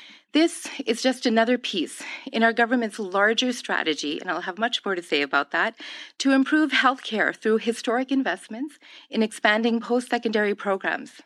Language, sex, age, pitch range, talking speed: English, female, 40-59, 195-265 Hz, 155 wpm